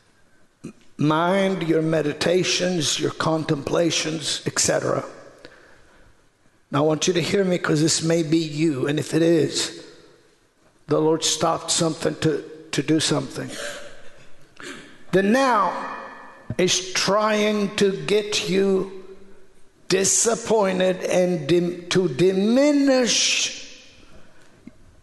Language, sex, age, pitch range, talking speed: English, male, 60-79, 180-285 Hz, 100 wpm